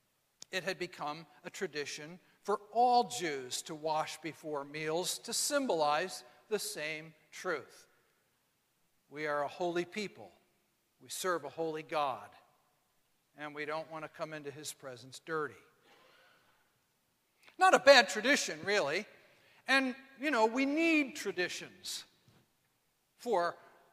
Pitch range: 155-230 Hz